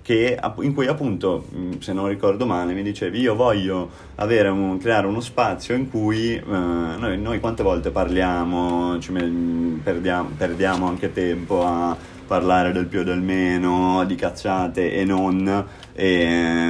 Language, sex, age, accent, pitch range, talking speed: Italian, male, 30-49, native, 85-100 Hz, 150 wpm